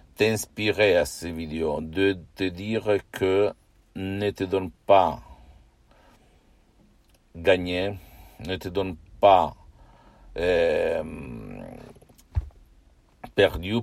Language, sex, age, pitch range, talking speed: Italian, male, 60-79, 80-100 Hz, 80 wpm